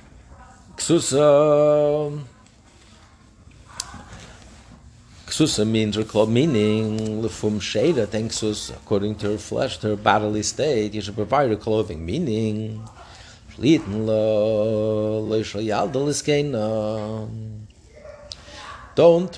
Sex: male